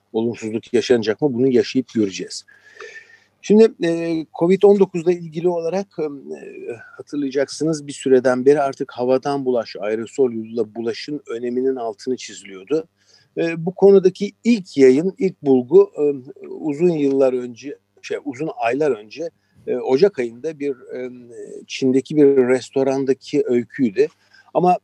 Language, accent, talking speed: Turkish, native, 125 wpm